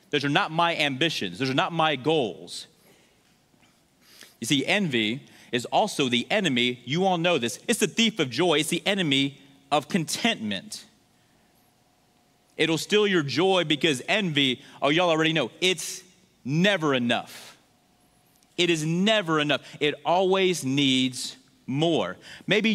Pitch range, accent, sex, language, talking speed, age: 155-205 Hz, American, male, English, 140 wpm, 30-49